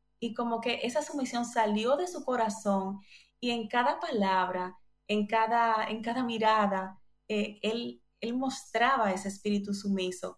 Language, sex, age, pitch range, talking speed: Spanish, female, 20-39, 190-225 Hz, 140 wpm